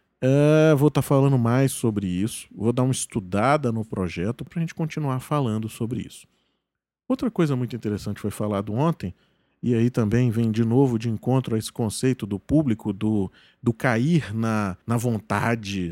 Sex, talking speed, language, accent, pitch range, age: male, 180 wpm, Portuguese, Brazilian, 120-190 Hz, 40-59